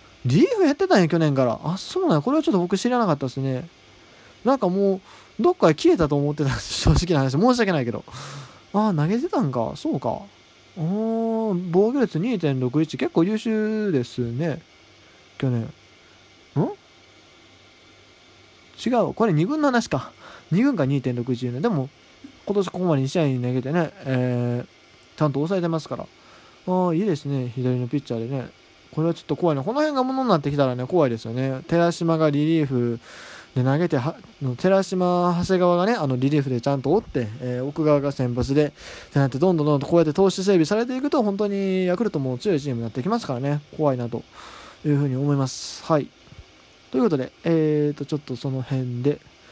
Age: 20-39